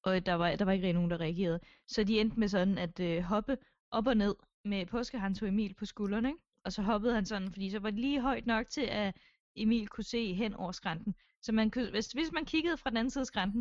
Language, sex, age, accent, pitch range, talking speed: Danish, female, 20-39, native, 185-245 Hz, 265 wpm